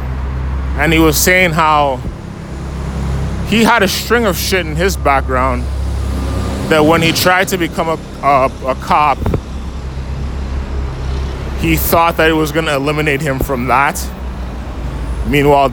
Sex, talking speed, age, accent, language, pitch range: male, 135 wpm, 20-39, American, English, 75-110 Hz